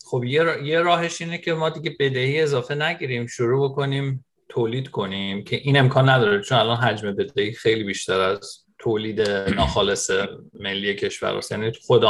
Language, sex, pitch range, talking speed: Persian, male, 120-150 Hz, 165 wpm